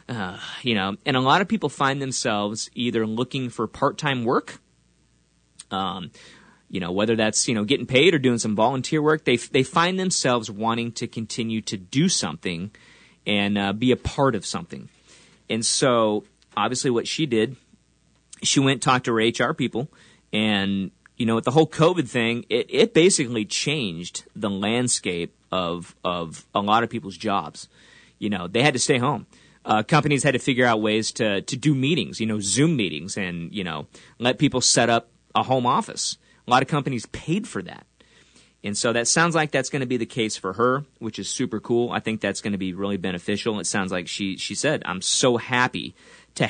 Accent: American